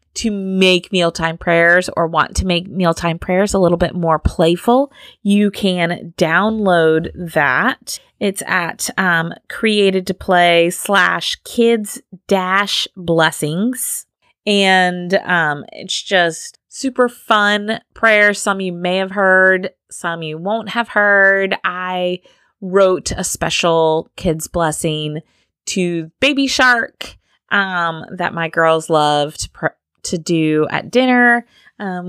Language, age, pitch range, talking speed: English, 30-49, 175-225 Hz, 125 wpm